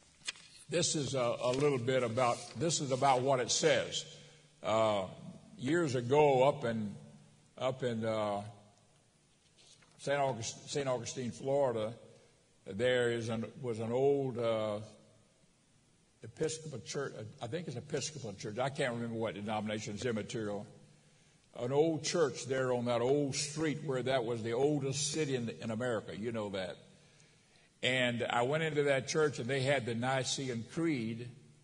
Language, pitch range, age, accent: English, 115-150 Hz, 60-79, American